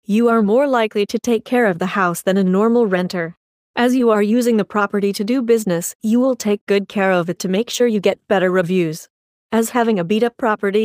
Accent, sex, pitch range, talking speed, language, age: American, female, 190-230 Hz, 230 wpm, English, 30-49